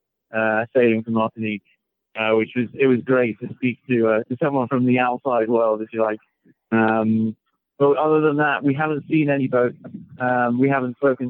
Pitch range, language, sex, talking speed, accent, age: 115-135 Hz, English, male, 195 wpm, British, 30-49